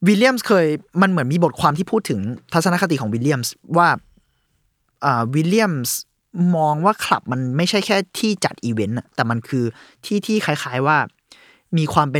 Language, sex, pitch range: Thai, male, 115-160 Hz